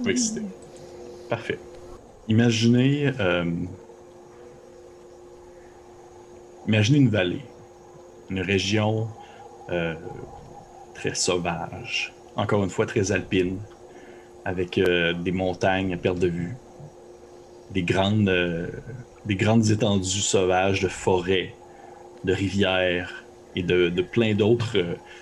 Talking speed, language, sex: 100 wpm, French, male